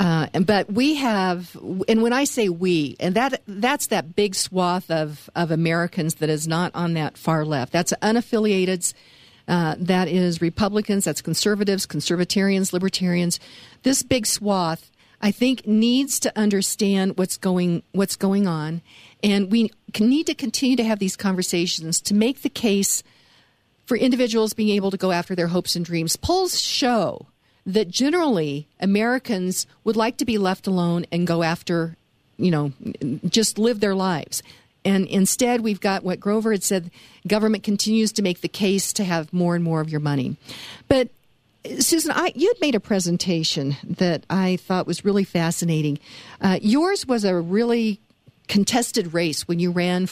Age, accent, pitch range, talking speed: 50-69, American, 170-220 Hz, 165 wpm